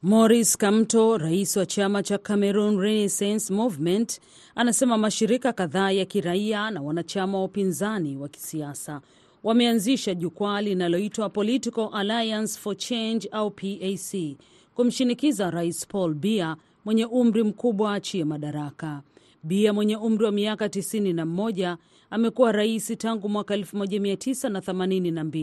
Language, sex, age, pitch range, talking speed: Swahili, female, 40-59, 175-220 Hz, 115 wpm